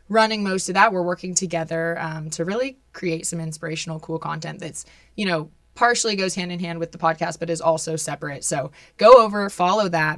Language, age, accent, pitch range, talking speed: English, 20-39, American, 165-190 Hz, 205 wpm